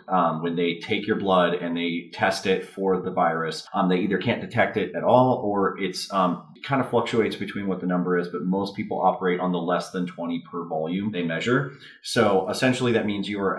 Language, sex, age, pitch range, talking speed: English, male, 30-49, 90-110 Hz, 225 wpm